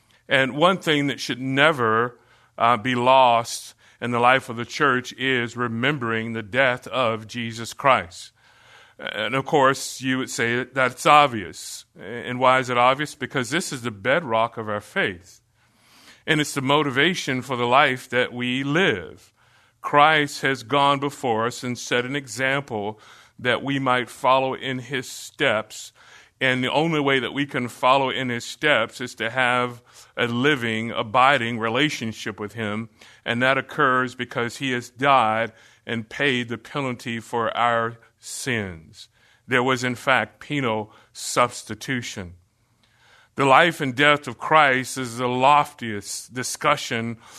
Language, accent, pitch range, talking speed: English, American, 115-135 Hz, 150 wpm